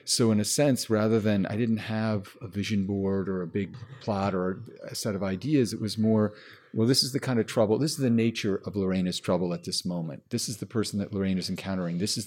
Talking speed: 250 wpm